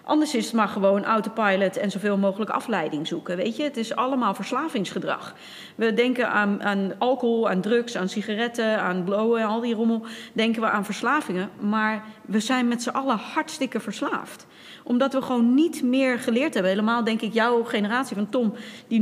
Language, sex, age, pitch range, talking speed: Dutch, female, 30-49, 200-240 Hz, 185 wpm